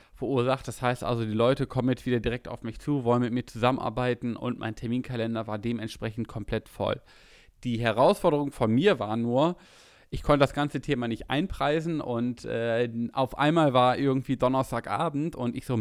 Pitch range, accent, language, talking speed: 115-130 Hz, German, German, 180 wpm